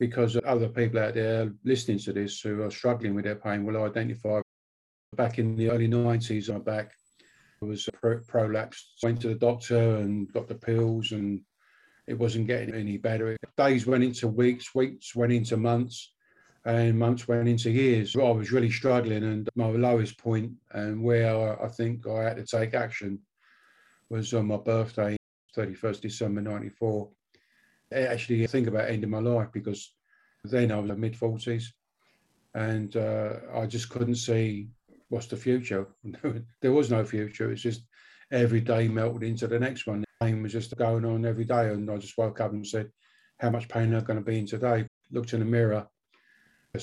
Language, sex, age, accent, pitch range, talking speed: English, male, 50-69, British, 110-120 Hz, 180 wpm